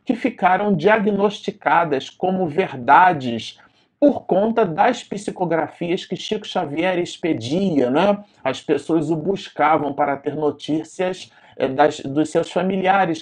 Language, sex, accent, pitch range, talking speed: Portuguese, male, Brazilian, 145-205 Hz, 110 wpm